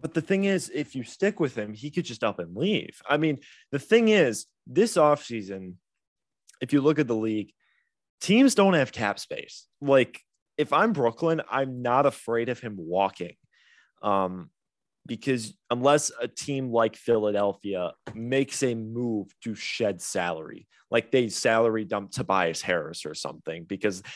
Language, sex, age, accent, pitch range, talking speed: English, male, 20-39, American, 100-140 Hz, 160 wpm